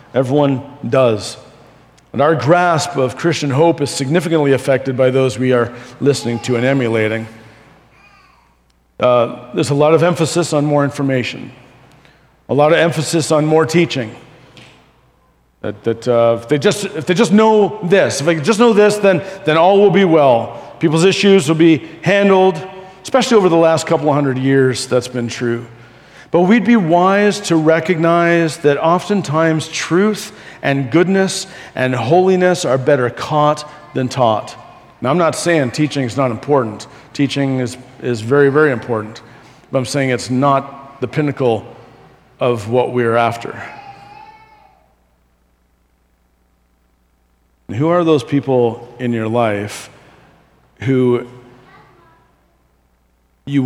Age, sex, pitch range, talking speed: 40-59, male, 120-165 Hz, 140 wpm